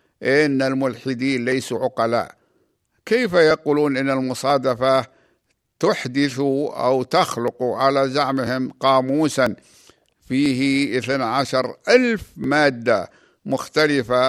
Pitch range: 130-140 Hz